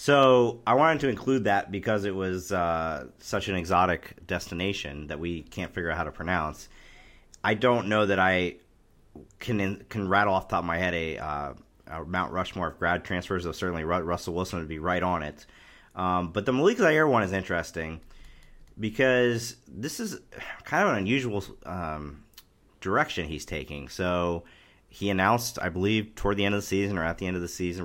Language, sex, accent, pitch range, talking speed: English, male, American, 80-100 Hz, 195 wpm